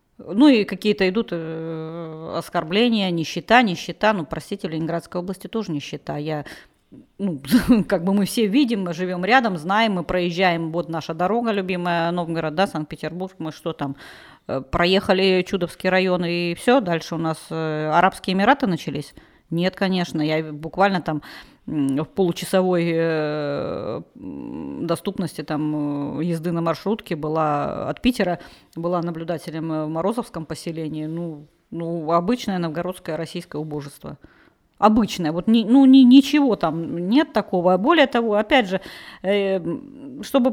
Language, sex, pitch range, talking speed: Russian, female, 160-215 Hz, 130 wpm